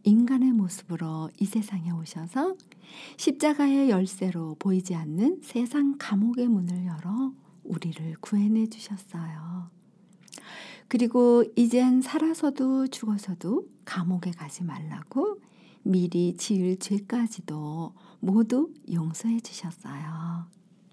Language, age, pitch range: Korean, 50-69, 175-245 Hz